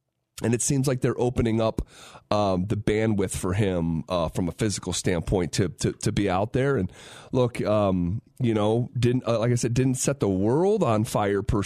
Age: 30-49